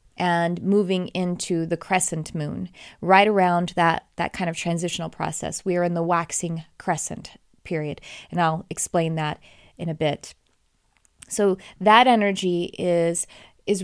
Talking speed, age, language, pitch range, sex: 145 wpm, 30-49, English, 170-195 Hz, female